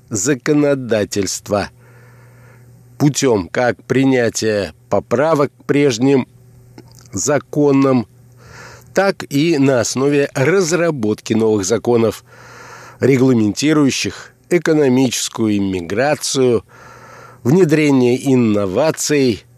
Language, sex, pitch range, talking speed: Russian, male, 120-145 Hz, 60 wpm